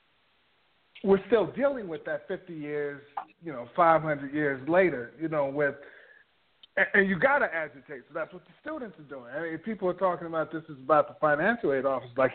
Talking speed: 205 wpm